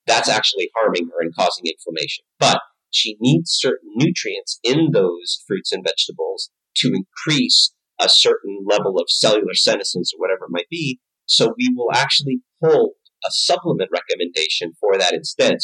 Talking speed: 155 wpm